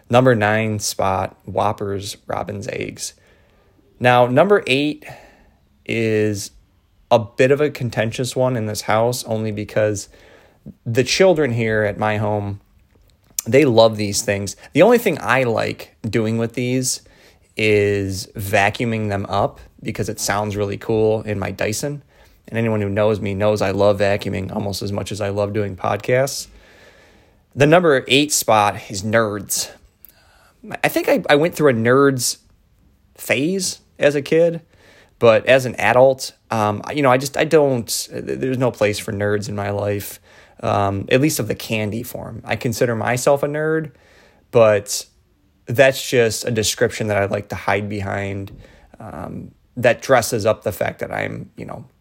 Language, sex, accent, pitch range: English, male, American, 100-125 Hz